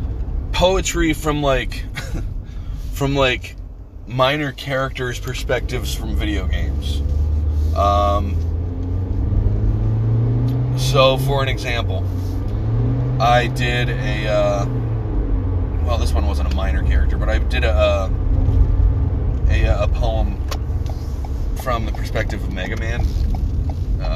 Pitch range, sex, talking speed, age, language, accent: 85-110 Hz, male, 105 wpm, 30-49, English, American